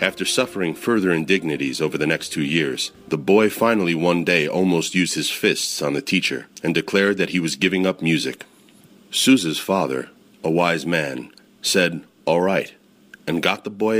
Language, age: English, 30-49